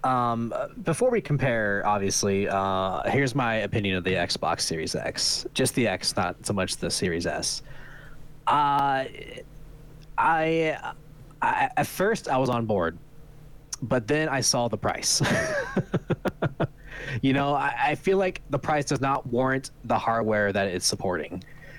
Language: English